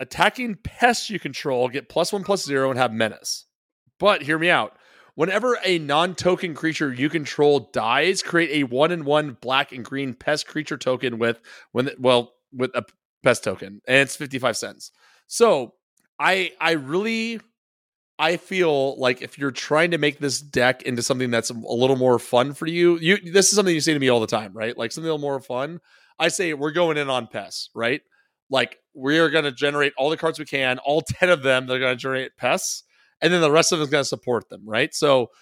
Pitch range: 125-165 Hz